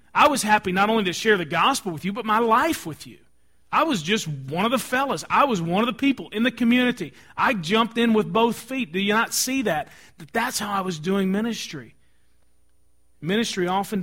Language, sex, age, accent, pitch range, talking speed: English, male, 40-59, American, 140-200 Hz, 220 wpm